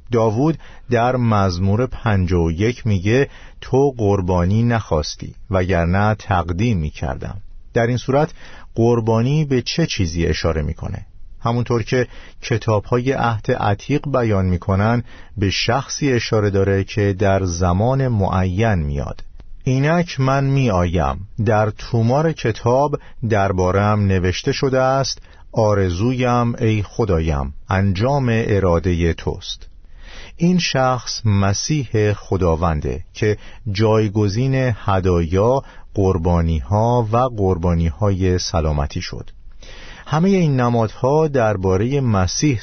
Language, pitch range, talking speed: Persian, 90-120 Hz, 105 wpm